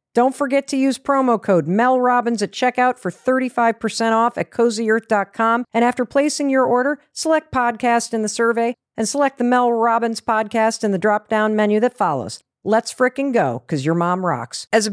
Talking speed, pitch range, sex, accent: 190 wpm, 190-255 Hz, female, American